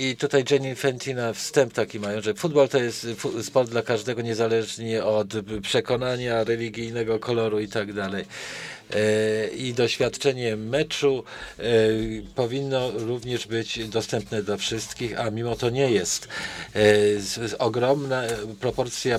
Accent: Polish